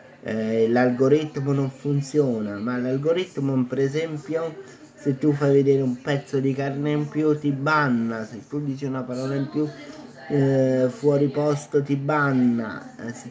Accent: native